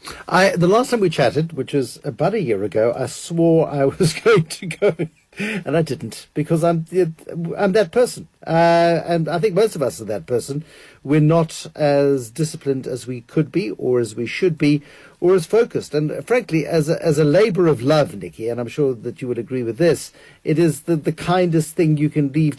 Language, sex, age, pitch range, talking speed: English, male, 60-79, 140-170 Hz, 215 wpm